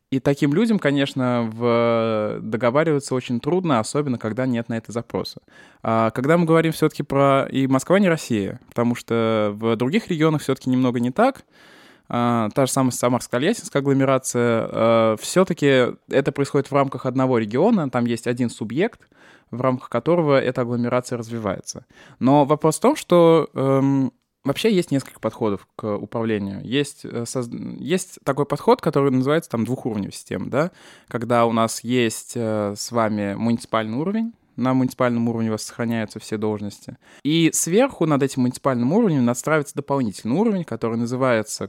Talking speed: 150 wpm